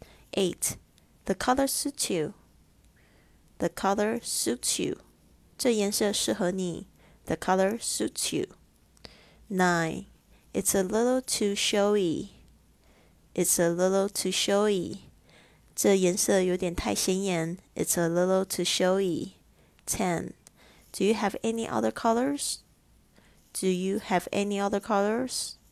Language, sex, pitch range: Chinese, female, 175-200 Hz